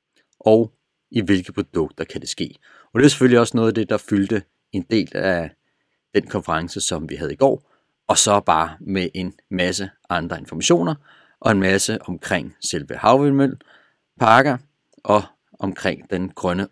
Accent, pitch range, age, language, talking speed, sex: native, 90-125 Hz, 40-59, Danish, 165 wpm, male